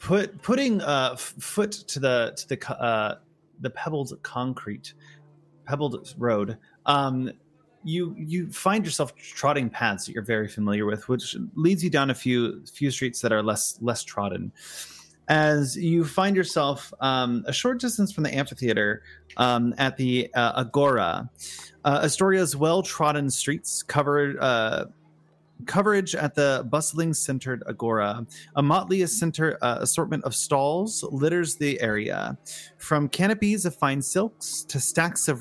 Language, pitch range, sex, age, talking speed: English, 125-165 Hz, male, 30-49, 145 wpm